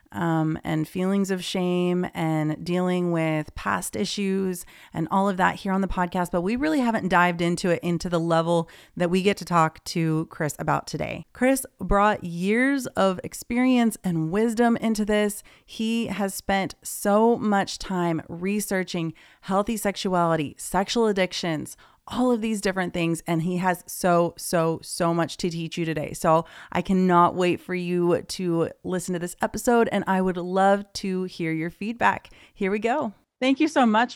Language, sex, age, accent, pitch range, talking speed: English, female, 30-49, American, 175-210 Hz, 175 wpm